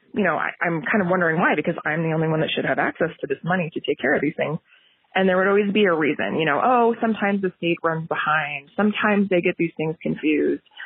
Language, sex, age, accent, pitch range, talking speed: English, female, 20-39, American, 170-215 Hz, 260 wpm